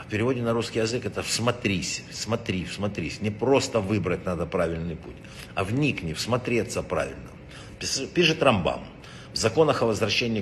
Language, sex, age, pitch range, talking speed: Russian, male, 60-79, 100-130 Hz, 145 wpm